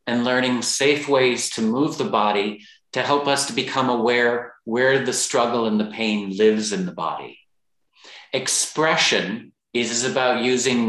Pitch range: 115-140 Hz